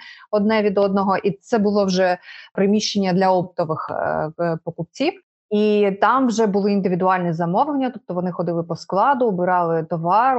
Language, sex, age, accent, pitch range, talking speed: Ukrainian, female, 20-39, native, 170-220 Hz, 140 wpm